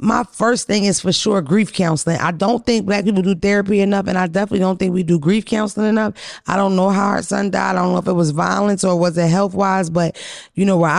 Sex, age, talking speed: female, 20-39, 260 wpm